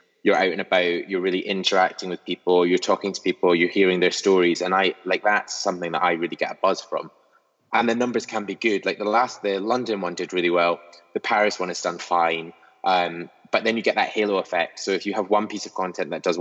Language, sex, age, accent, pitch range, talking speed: English, male, 20-39, British, 85-110 Hz, 250 wpm